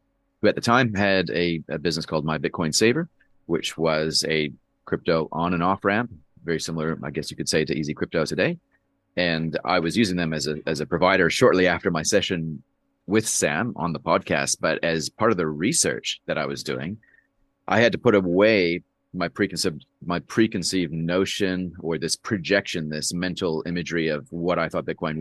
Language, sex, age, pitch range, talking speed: English, male, 30-49, 80-95 Hz, 195 wpm